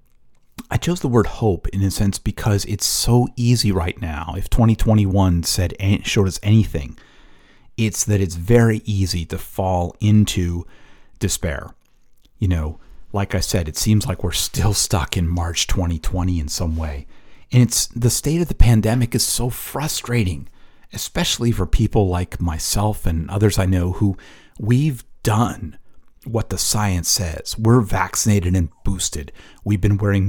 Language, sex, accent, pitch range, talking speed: English, male, American, 90-110 Hz, 155 wpm